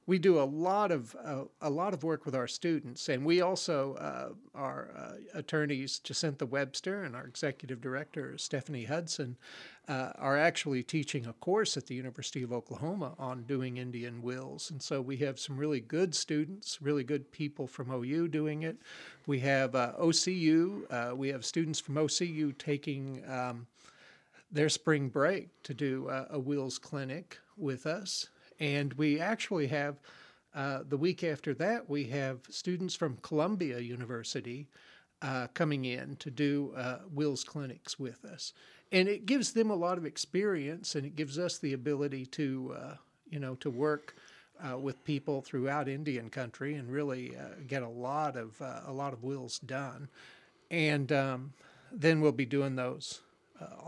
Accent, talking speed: American, 170 wpm